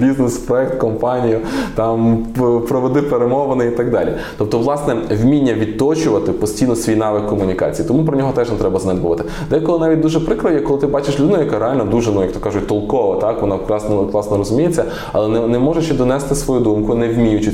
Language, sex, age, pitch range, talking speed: Ukrainian, male, 20-39, 110-130 Hz, 180 wpm